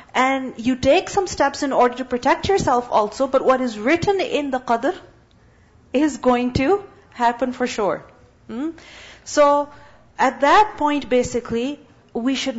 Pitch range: 235-285 Hz